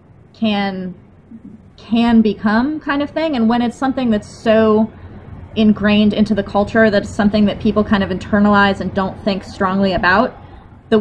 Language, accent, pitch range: English, American, 185-215 Hz